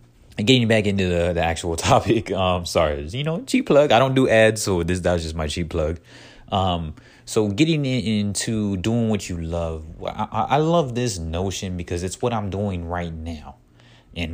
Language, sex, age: English, male, 20-39